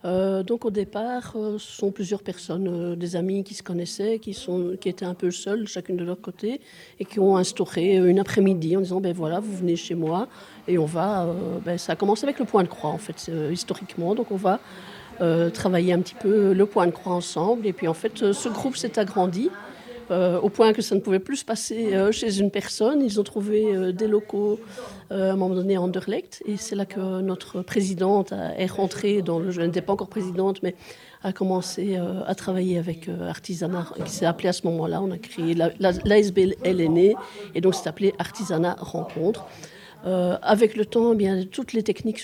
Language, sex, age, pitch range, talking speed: French, female, 50-69, 180-210 Hz, 225 wpm